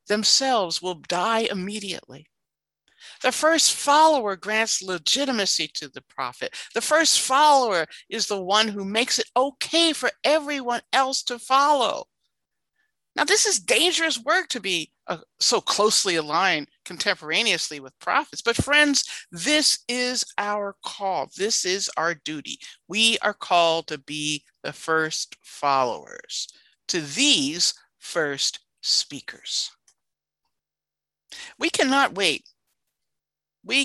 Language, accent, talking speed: English, American, 120 wpm